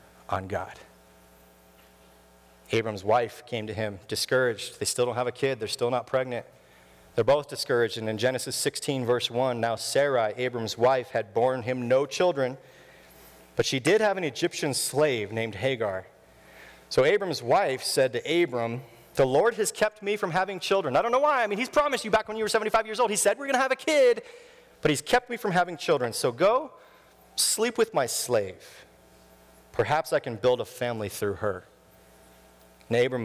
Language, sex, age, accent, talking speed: English, male, 40-59, American, 190 wpm